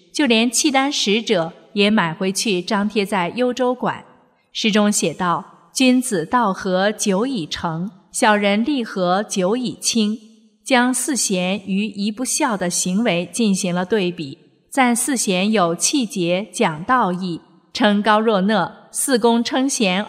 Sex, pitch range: female, 190-240 Hz